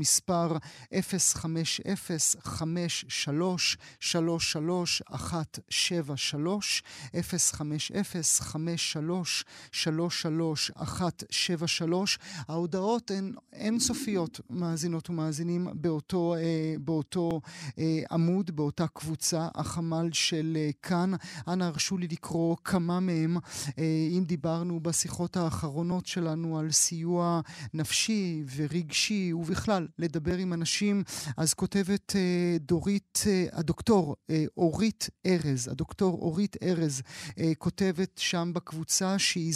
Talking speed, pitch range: 80 wpm, 155-180 Hz